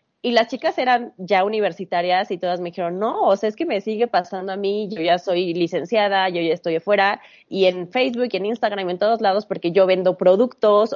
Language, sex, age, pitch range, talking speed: Spanish, female, 20-39, 180-225 Hz, 220 wpm